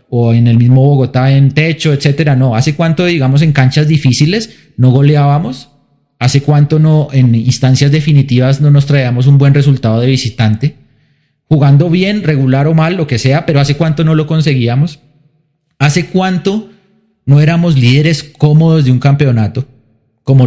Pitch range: 125-150 Hz